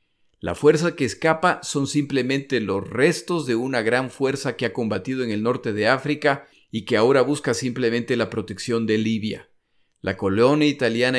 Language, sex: Spanish, male